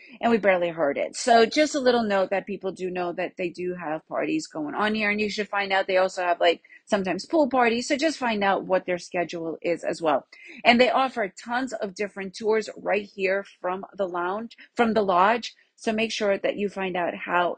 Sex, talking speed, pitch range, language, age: female, 230 wpm, 190-245 Hz, English, 40-59